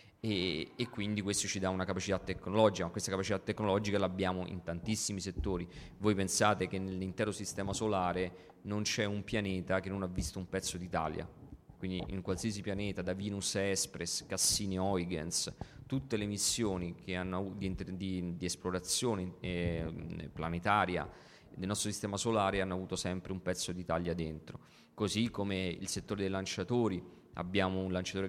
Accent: native